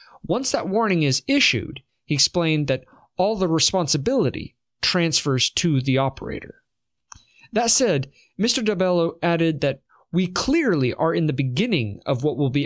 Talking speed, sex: 145 wpm, male